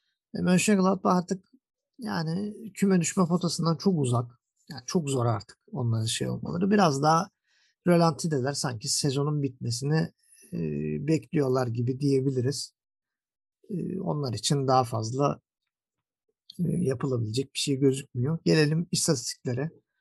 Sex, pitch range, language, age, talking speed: male, 130-175 Hz, Turkish, 50-69, 105 wpm